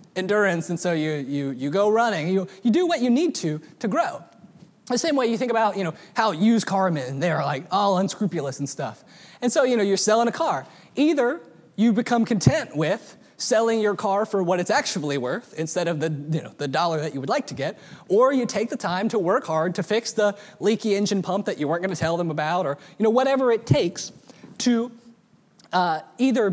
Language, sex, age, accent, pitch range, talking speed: English, male, 20-39, American, 165-230 Hz, 225 wpm